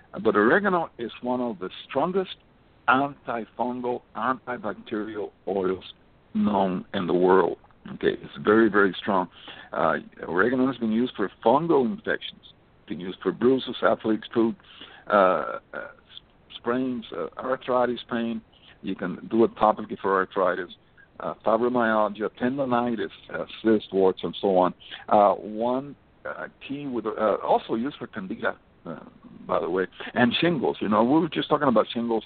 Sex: male